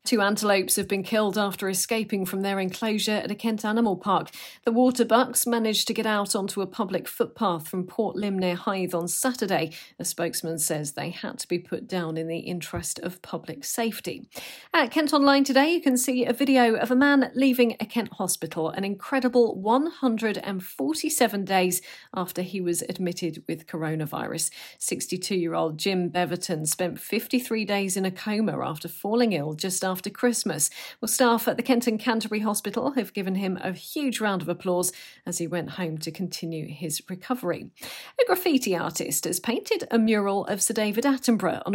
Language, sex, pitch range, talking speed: English, female, 180-240 Hz, 180 wpm